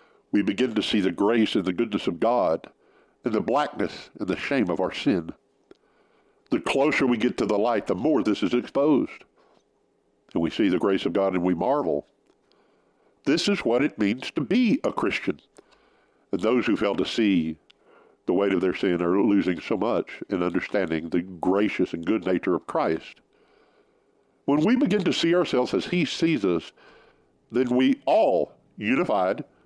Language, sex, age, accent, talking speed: English, male, 60-79, American, 180 wpm